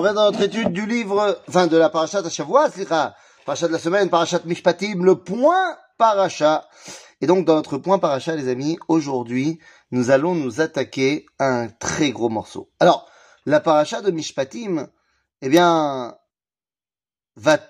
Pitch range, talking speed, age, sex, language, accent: 145-200 Hz, 155 wpm, 30-49, male, French, French